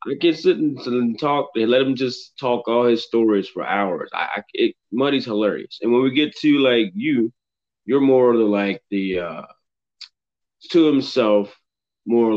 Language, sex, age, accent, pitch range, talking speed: English, male, 20-39, American, 100-140 Hz, 185 wpm